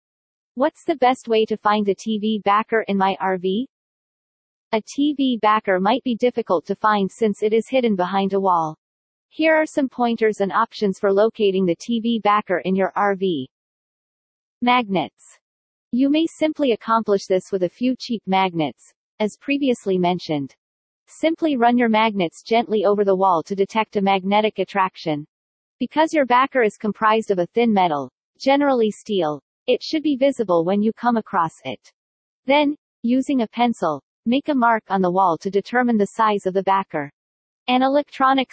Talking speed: 165 wpm